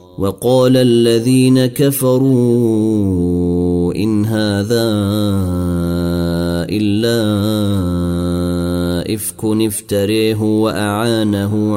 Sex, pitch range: male, 90-115 Hz